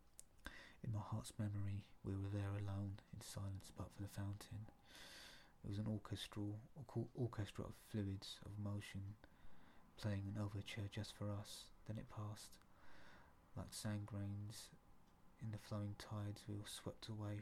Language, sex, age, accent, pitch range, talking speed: English, male, 30-49, British, 95-105 Hz, 150 wpm